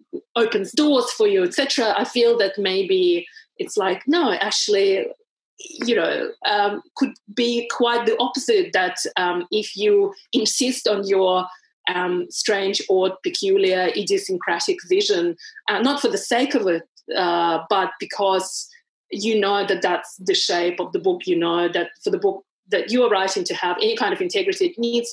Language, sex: English, female